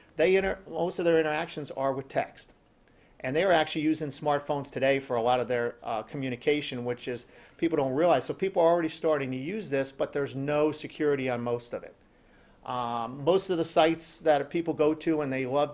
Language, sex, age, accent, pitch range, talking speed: English, male, 50-69, American, 135-160 Hz, 215 wpm